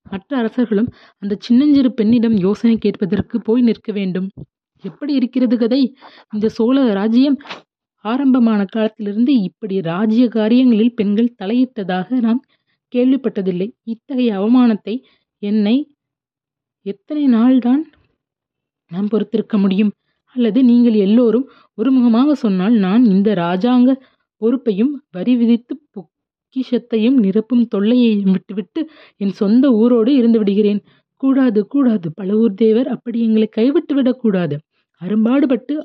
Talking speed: 105 wpm